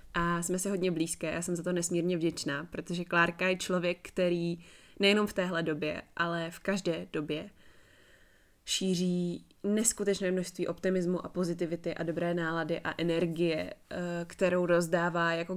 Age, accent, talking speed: 20-39, native, 145 wpm